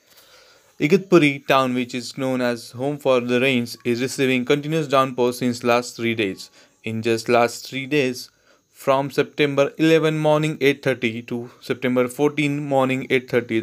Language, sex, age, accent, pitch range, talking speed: Marathi, male, 30-49, native, 120-145 Hz, 145 wpm